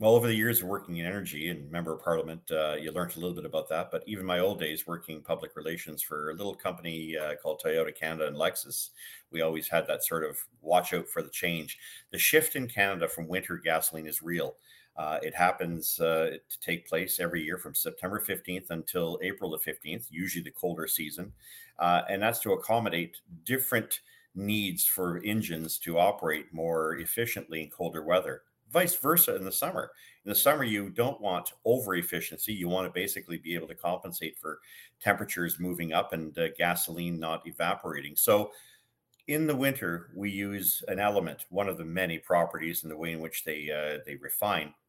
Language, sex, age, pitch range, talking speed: English, male, 50-69, 85-105 Hz, 195 wpm